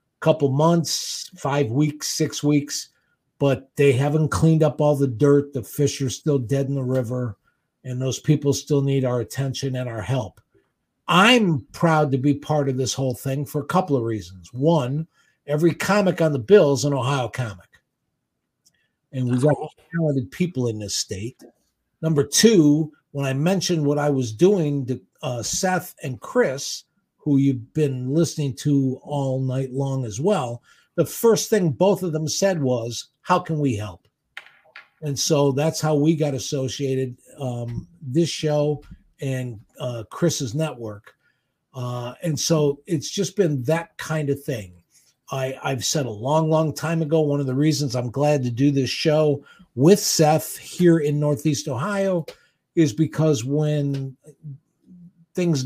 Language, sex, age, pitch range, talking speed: English, male, 50-69, 130-160 Hz, 165 wpm